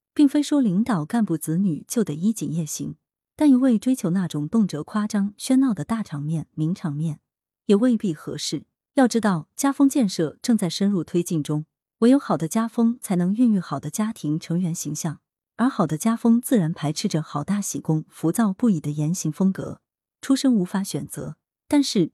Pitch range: 160-230 Hz